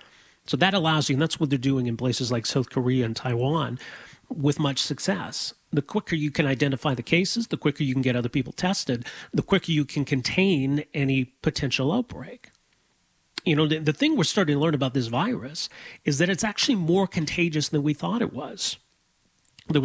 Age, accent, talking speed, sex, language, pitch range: 40-59, American, 200 wpm, male, English, 135-175 Hz